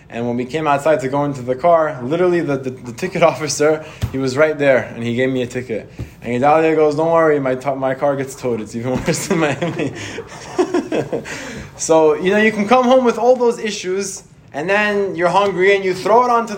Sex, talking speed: male, 225 wpm